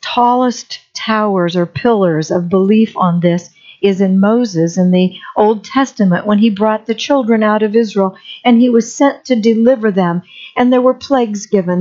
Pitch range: 200-250 Hz